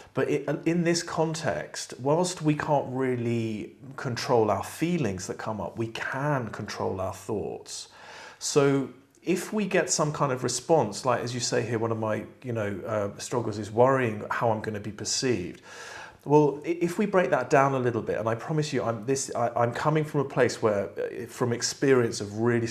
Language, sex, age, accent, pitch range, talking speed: English, male, 30-49, British, 110-145 Hz, 190 wpm